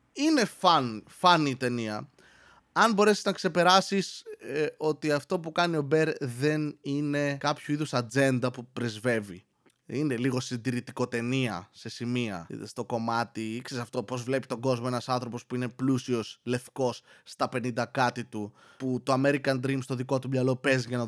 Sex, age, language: male, 20-39, Greek